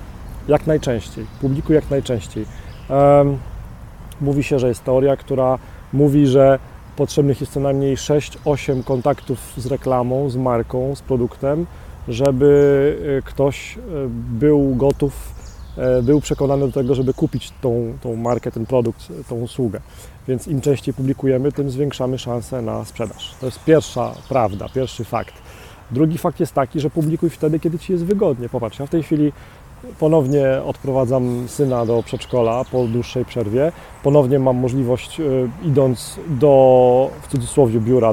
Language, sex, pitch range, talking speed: Polish, male, 125-145 Hz, 140 wpm